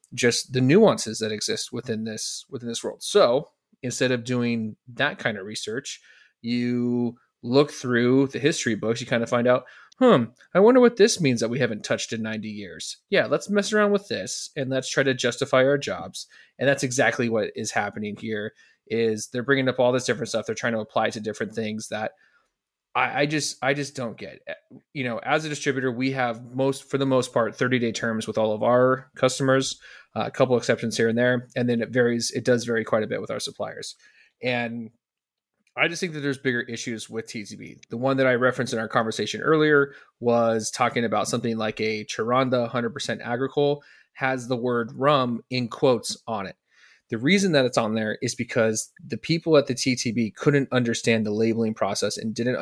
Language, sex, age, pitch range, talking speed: English, male, 20-39, 115-135 Hz, 210 wpm